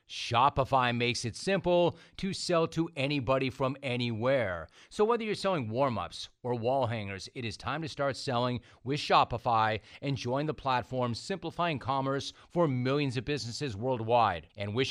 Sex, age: male, 40-59